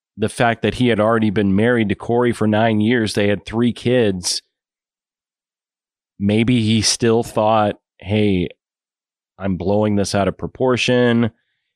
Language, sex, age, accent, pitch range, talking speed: English, male, 30-49, American, 90-115 Hz, 145 wpm